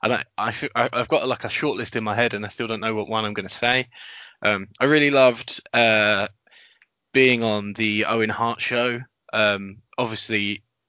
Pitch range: 110-125 Hz